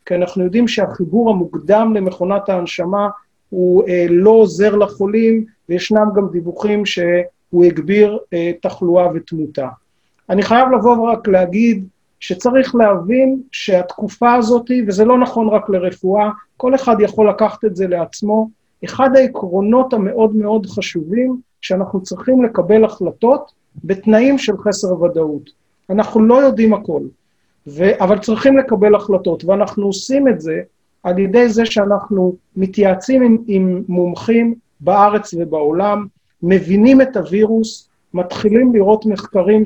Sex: male